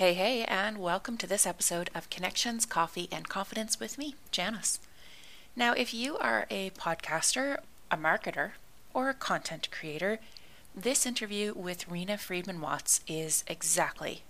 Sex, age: female, 30-49